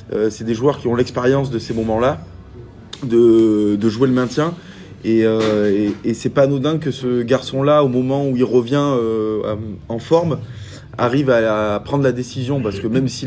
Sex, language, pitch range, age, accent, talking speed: male, French, 110-135 Hz, 20-39, French, 200 wpm